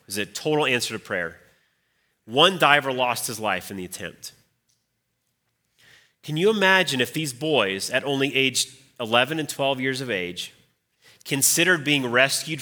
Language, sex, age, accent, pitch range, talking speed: English, male, 30-49, American, 115-140 Hz, 155 wpm